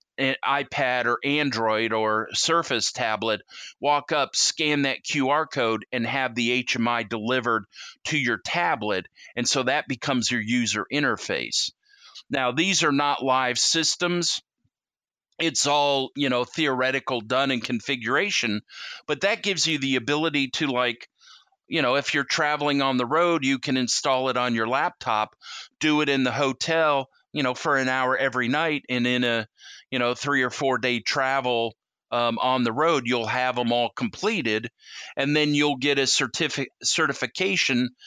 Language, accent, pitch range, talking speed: English, American, 120-145 Hz, 160 wpm